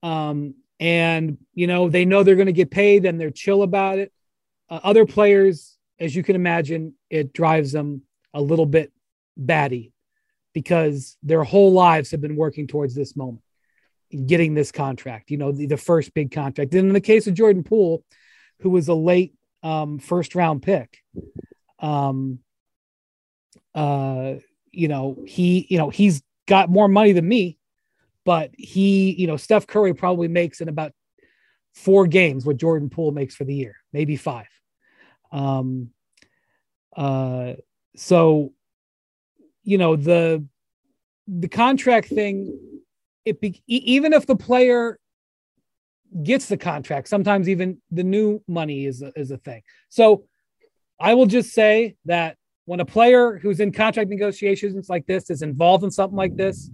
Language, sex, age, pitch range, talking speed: English, male, 30-49, 150-200 Hz, 155 wpm